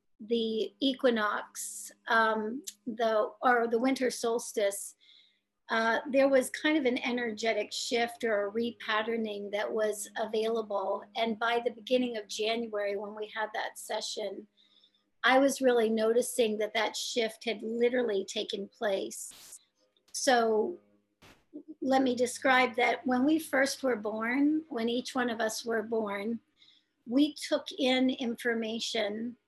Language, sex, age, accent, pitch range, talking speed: English, female, 50-69, American, 220-255 Hz, 130 wpm